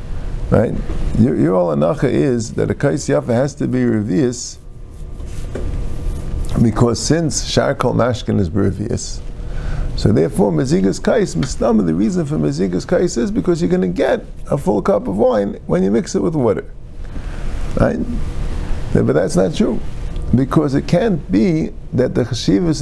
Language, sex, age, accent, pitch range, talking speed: English, male, 50-69, American, 95-145 Hz, 155 wpm